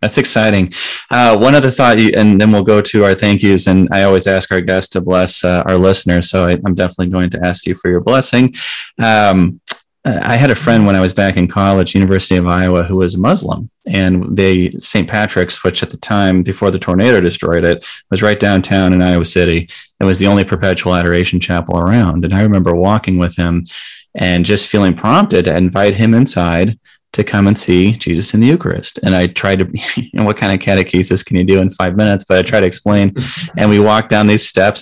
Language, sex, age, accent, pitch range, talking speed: English, male, 30-49, American, 90-105 Hz, 220 wpm